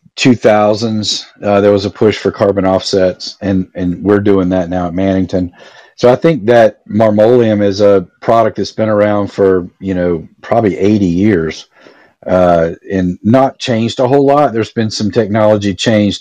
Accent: American